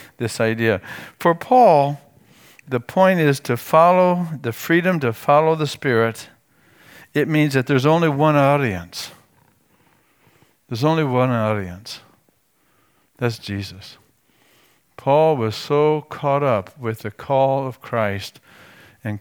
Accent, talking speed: American, 120 wpm